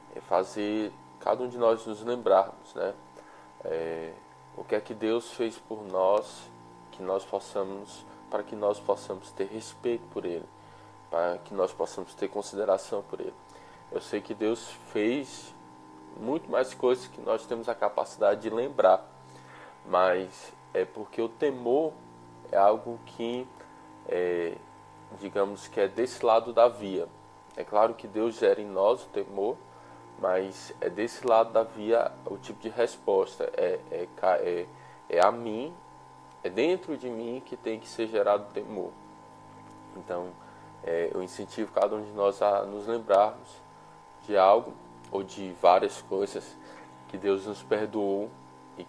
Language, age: Portuguese, 20-39